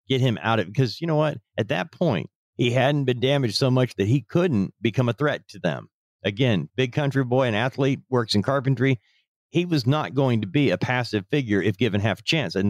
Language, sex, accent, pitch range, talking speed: English, male, American, 105-130 Hz, 230 wpm